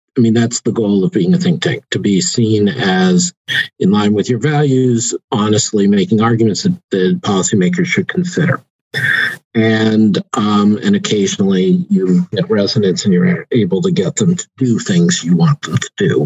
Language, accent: English, American